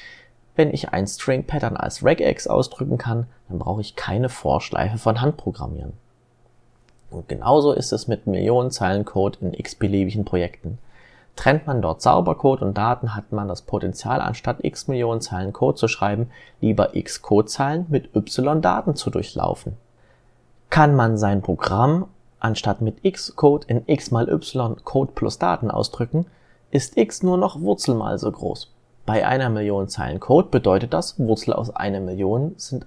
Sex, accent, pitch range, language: male, German, 105-140 Hz, German